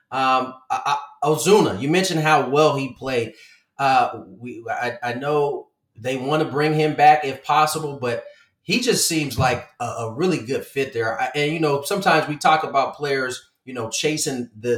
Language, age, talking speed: English, 30-49, 180 wpm